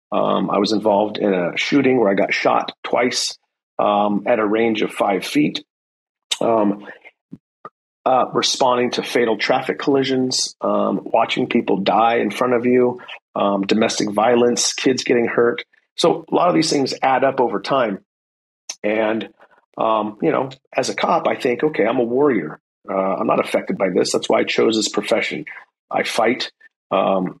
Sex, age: male, 40-59